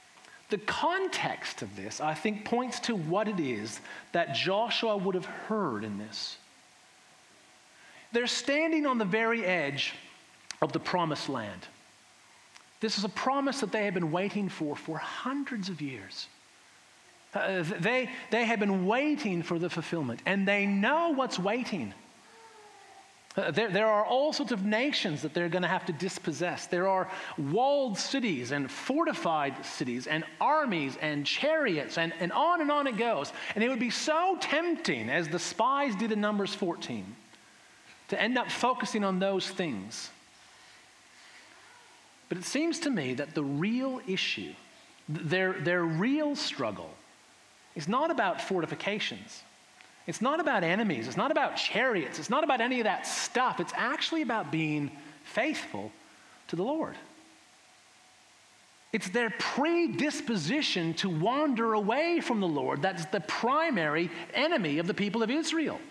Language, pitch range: English, 175-275 Hz